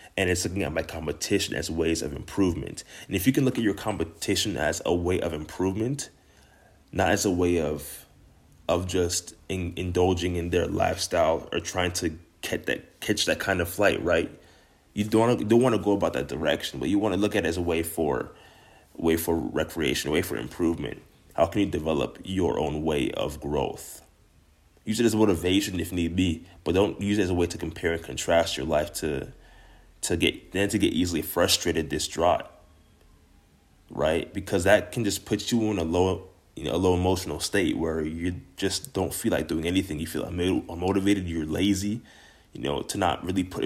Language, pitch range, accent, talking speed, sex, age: English, 80-95 Hz, American, 200 wpm, male, 20-39